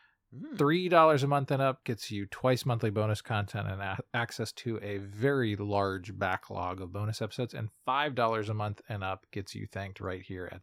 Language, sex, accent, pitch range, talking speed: English, male, American, 100-135 Hz, 180 wpm